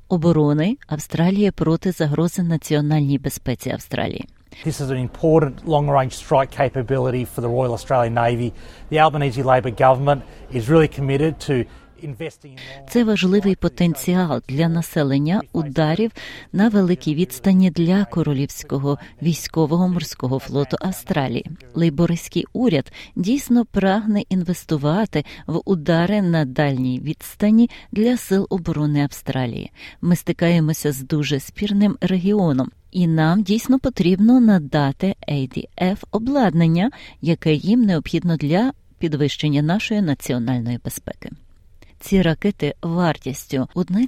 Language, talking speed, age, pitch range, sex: Ukrainian, 95 wpm, 30-49, 145-190 Hz, female